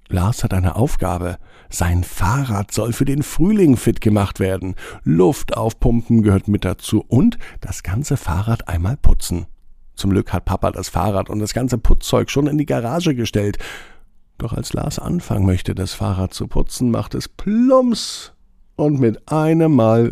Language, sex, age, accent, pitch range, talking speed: German, male, 50-69, German, 95-125 Hz, 165 wpm